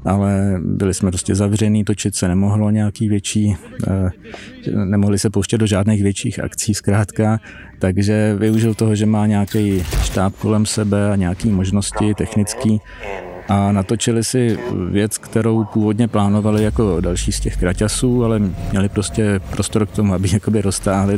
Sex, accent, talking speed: male, native, 145 wpm